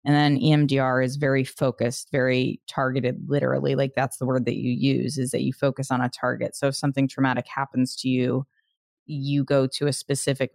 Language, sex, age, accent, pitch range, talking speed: English, female, 20-39, American, 130-155 Hz, 200 wpm